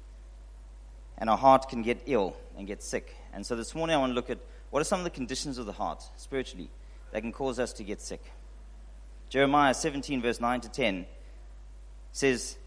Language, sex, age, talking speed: English, male, 40-59, 200 wpm